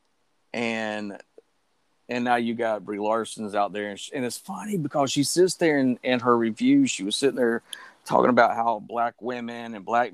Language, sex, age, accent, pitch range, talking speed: English, male, 40-59, American, 115-145 Hz, 200 wpm